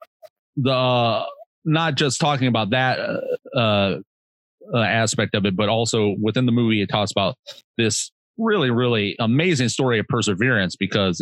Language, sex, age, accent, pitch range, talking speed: English, male, 30-49, American, 95-120 Hz, 150 wpm